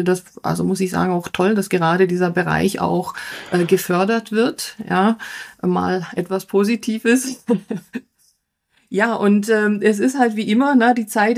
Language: German